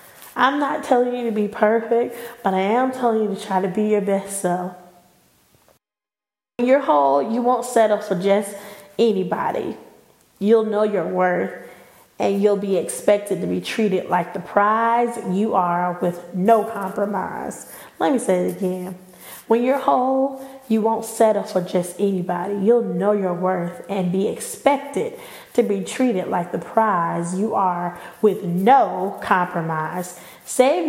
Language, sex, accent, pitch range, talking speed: English, female, American, 185-235 Hz, 155 wpm